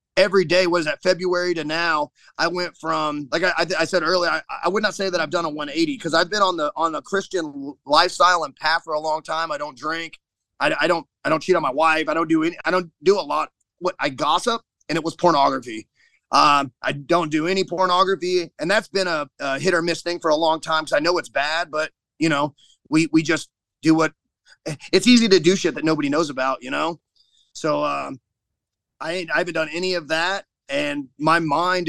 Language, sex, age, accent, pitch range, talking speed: English, male, 30-49, American, 150-185 Hz, 235 wpm